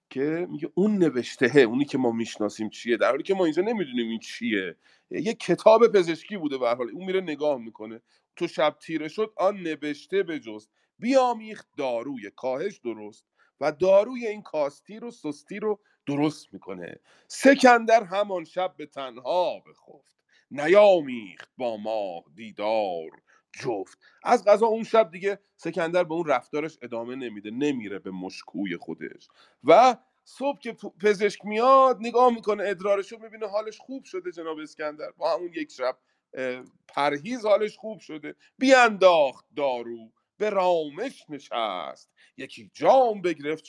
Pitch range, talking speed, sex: 145-220 Hz, 145 wpm, male